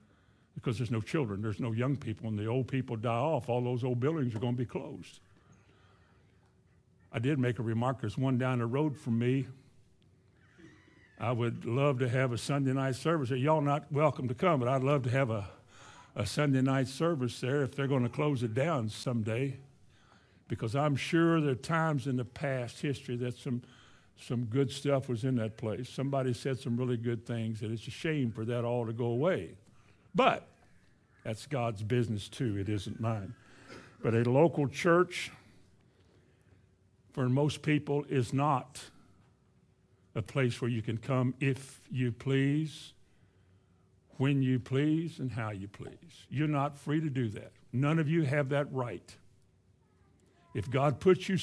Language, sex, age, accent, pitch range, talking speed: English, male, 60-79, American, 115-140 Hz, 175 wpm